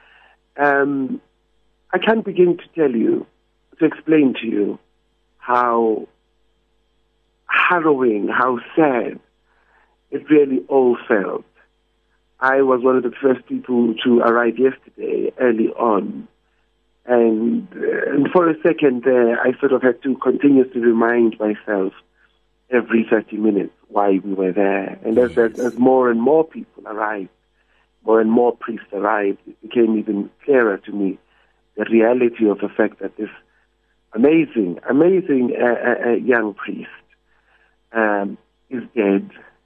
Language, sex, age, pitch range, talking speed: English, male, 50-69, 110-135 Hz, 135 wpm